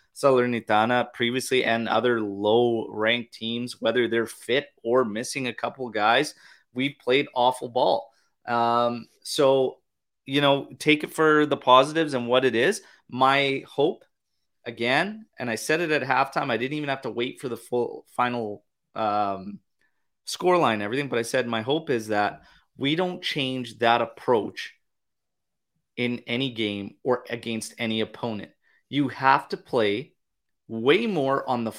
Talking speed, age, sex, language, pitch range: 150 wpm, 30-49, male, English, 115-135 Hz